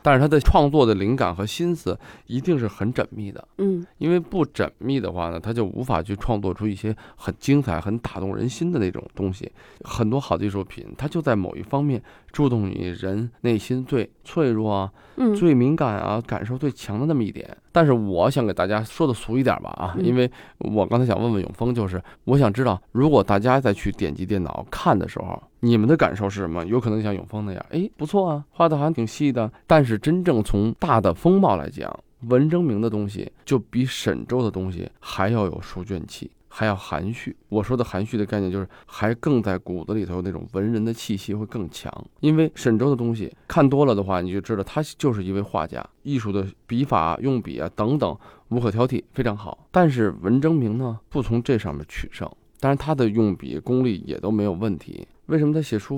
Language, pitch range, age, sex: Chinese, 100-135 Hz, 20-39, male